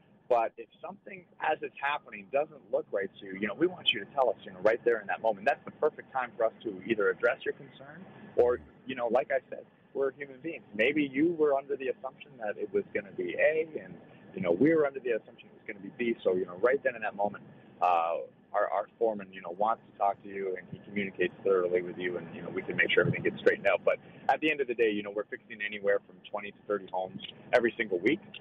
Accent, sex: American, male